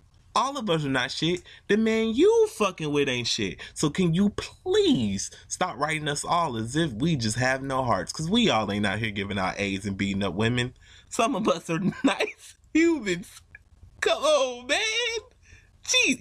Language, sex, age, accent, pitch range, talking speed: English, male, 20-39, American, 115-180 Hz, 190 wpm